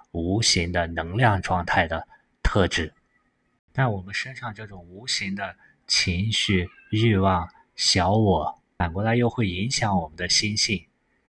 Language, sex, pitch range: Chinese, male, 90-115 Hz